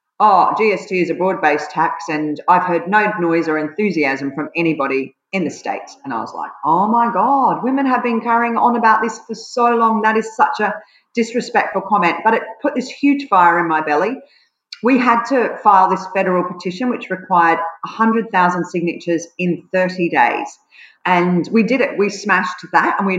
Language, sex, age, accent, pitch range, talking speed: English, female, 40-59, Australian, 170-225 Hz, 190 wpm